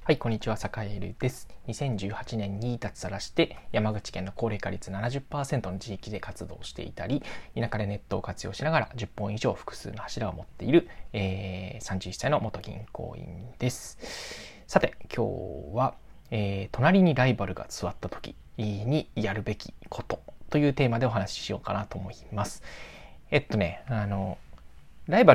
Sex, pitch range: male, 100-135 Hz